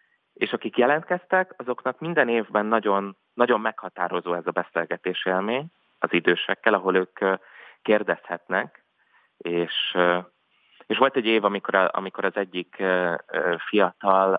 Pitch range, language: 90-125 Hz, Hungarian